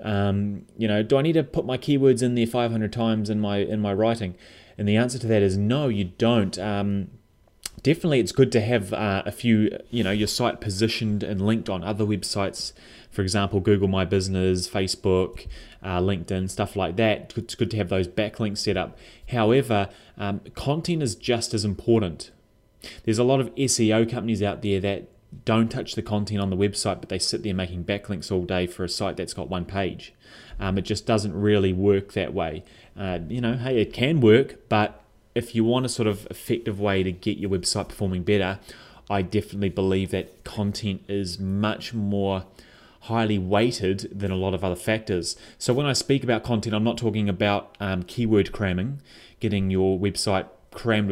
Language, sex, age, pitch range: English, male, 20-39, 95-115 Hz